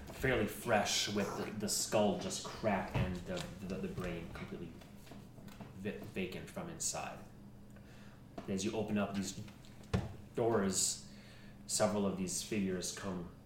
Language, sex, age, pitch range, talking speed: English, male, 30-49, 95-110 Hz, 135 wpm